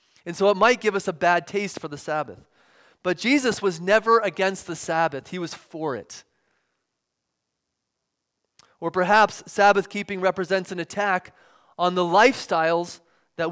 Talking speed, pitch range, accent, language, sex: 150 wpm, 170-215 Hz, American, English, male